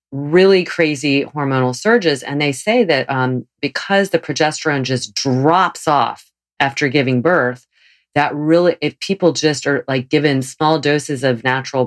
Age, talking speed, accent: 40-59, 150 wpm, American